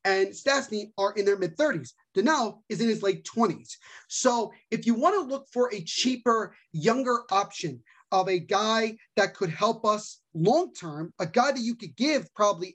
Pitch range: 185-230 Hz